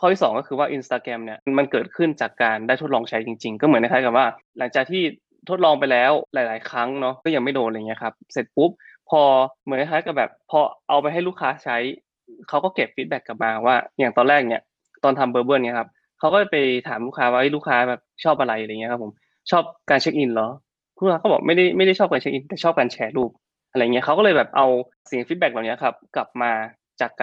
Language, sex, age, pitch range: Thai, male, 20-39, 120-145 Hz